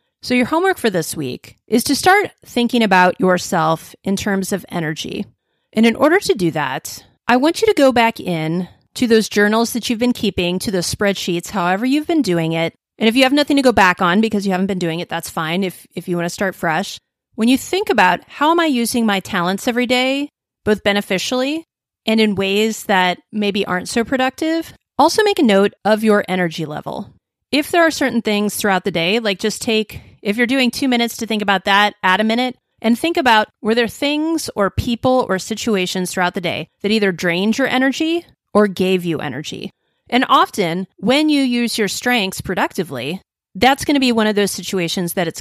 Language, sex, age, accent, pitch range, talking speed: English, female, 30-49, American, 180-245 Hz, 215 wpm